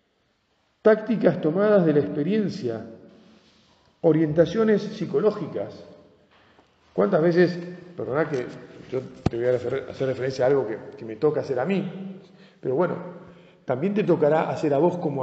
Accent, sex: Argentinian, male